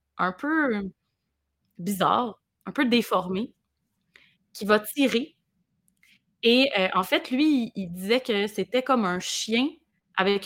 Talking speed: 125 wpm